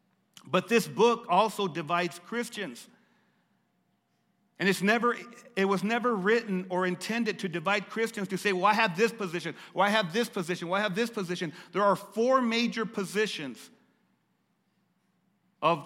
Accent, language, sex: American, English, male